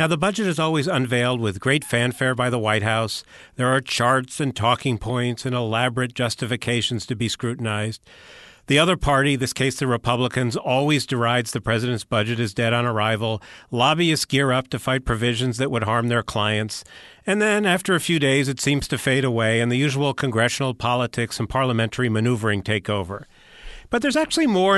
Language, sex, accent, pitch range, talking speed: English, male, American, 110-145 Hz, 185 wpm